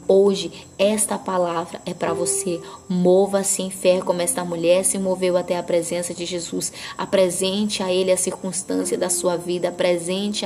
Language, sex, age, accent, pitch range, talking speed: Portuguese, female, 10-29, Brazilian, 180-195 Hz, 160 wpm